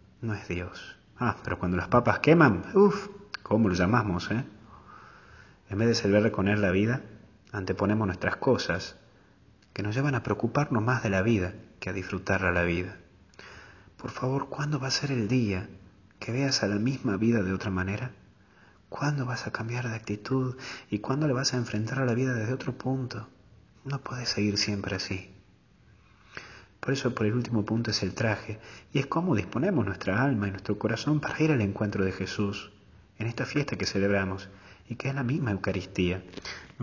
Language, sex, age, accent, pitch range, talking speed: Spanish, male, 30-49, Argentinian, 100-130 Hz, 185 wpm